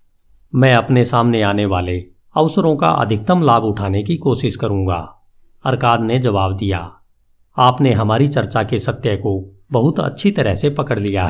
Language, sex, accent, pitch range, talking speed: Hindi, male, native, 100-135 Hz, 155 wpm